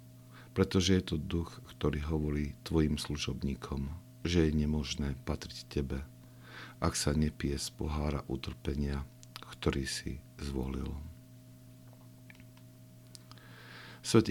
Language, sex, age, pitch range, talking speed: Slovak, male, 60-79, 70-95 Hz, 95 wpm